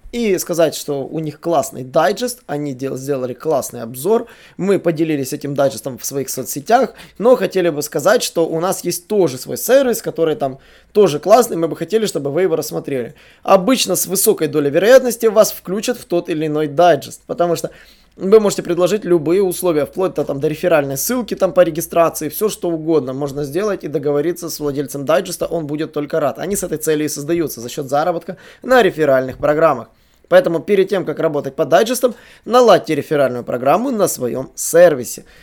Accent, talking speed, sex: native, 180 wpm, male